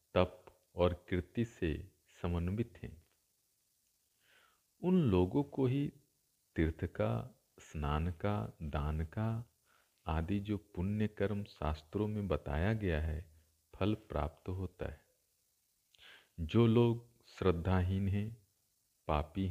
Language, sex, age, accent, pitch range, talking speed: Hindi, male, 50-69, native, 85-110 Hz, 105 wpm